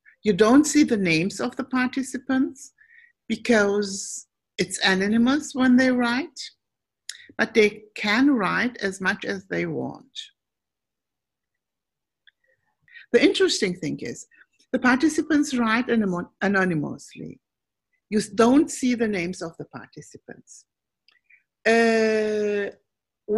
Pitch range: 205-265 Hz